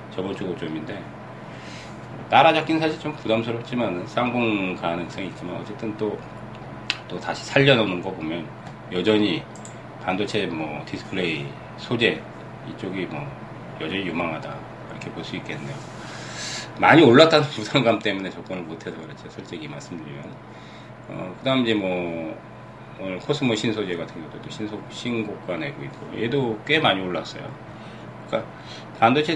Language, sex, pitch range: Korean, male, 95-130 Hz